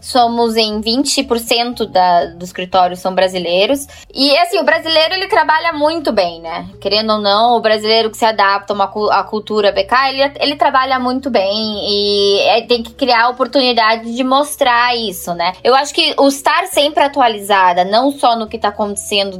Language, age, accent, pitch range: Portuguese, 10-29, Brazilian, 210-280 Hz